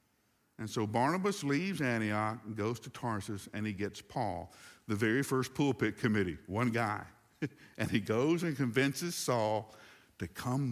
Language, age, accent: English, 60-79, American